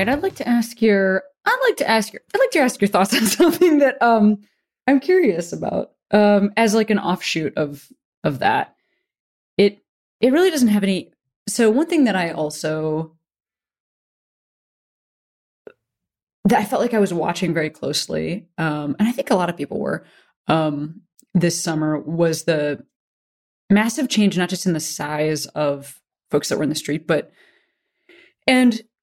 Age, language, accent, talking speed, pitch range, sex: 20-39, English, American, 170 wpm, 165-235 Hz, female